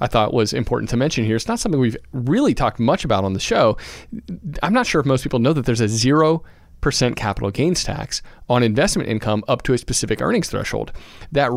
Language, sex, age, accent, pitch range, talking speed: English, male, 40-59, American, 105-130 Hz, 220 wpm